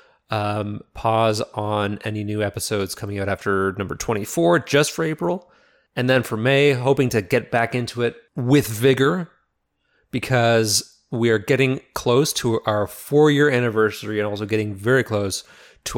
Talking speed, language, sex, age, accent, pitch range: 155 wpm, English, male, 30-49, American, 100-130 Hz